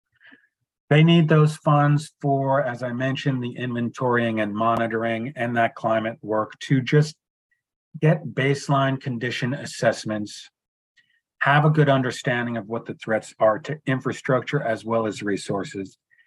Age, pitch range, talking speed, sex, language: 40-59, 115-140 Hz, 135 wpm, male, English